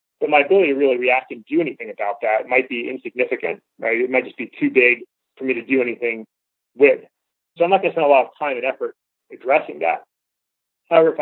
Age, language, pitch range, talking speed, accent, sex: 30-49, English, 125-195 Hz, 230 wpm, American, male